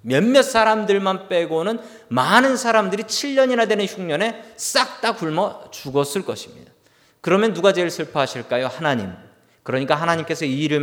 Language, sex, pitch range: Korean, male, 155-225 Hz